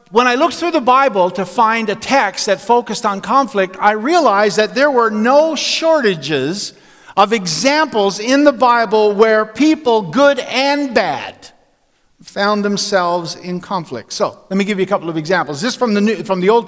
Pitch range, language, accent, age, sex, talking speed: 195-265 Hz, English, American, 50-69, male, 180 wpm